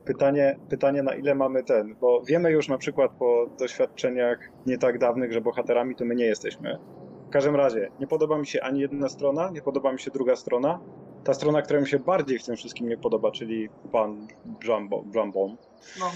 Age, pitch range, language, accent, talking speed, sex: 30-49, 115-135 Hz, Polish, native, 195 wpm, male